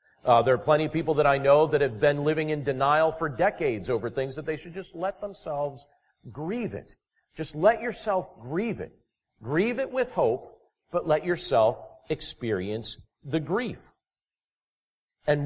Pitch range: 140-205 Hz